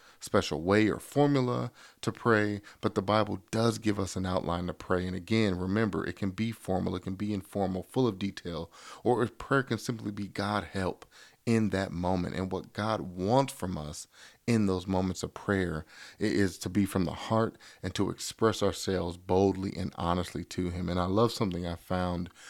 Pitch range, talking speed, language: 90-110 Hz, 195 wpm, English